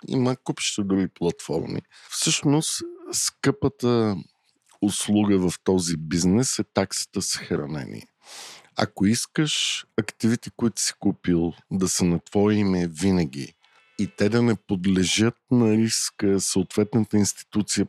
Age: 50-69